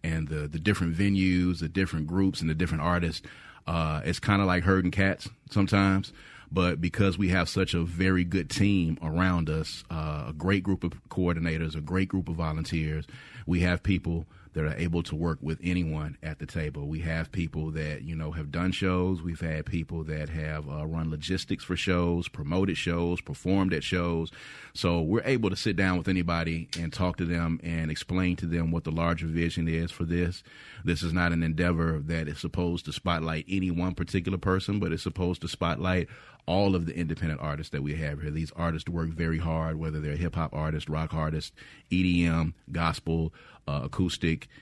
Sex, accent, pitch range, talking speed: male, American, 80-90 Hz, 195 wpm